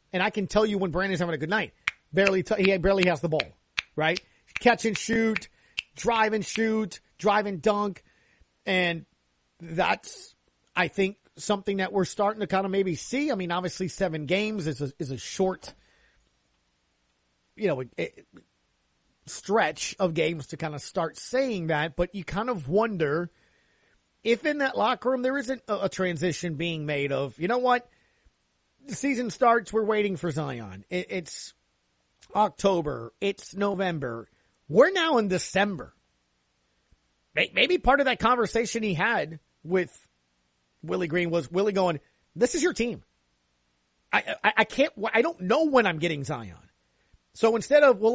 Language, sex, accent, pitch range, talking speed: English, male, American, 155-225 Hz, 160 wpm